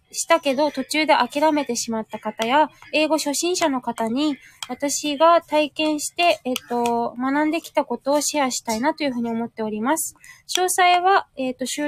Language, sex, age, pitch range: Japanese, female, 20-39, 235-315 Hz